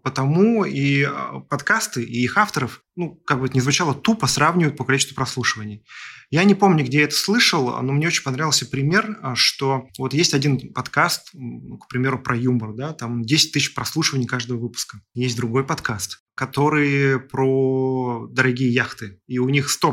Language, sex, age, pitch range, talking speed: Russian, male, 20-39, 125-150 Hz, 165 wpm